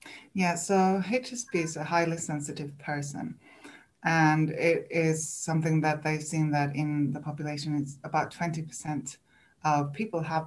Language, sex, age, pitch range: English, female, 20-39, 145-160 Hz